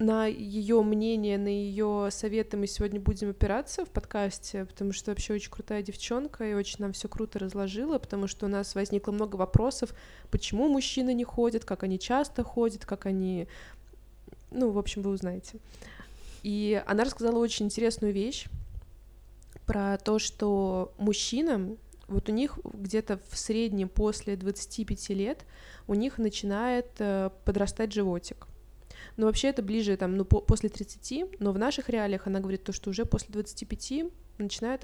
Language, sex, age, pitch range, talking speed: Russian, female, 20-39, 195-225 Hz, 155 wpm